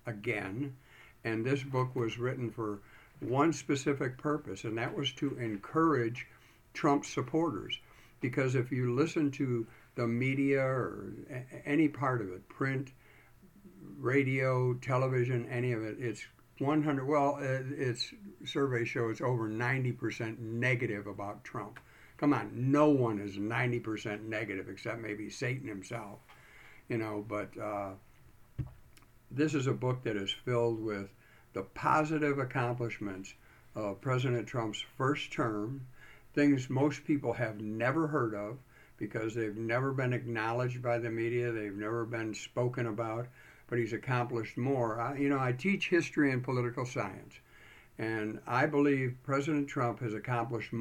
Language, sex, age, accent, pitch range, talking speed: English, male, 60-79, American, 110-140 Hz, 140 wpm